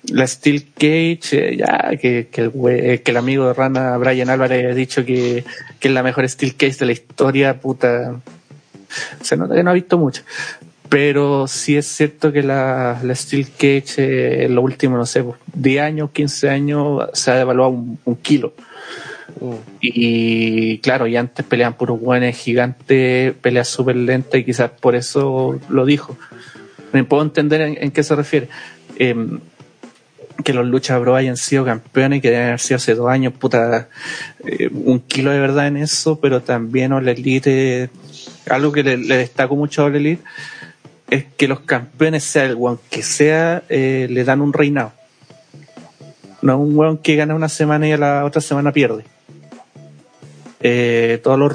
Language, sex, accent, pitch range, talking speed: Spanish, male, Mexican, 125-145 Hz, 180 wpm